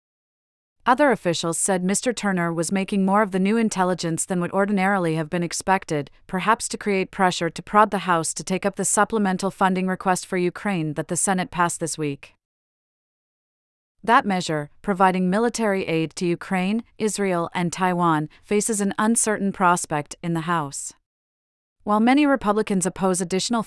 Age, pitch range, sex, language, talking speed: 40-59, 170-200 Hz, female, English, 160 wpm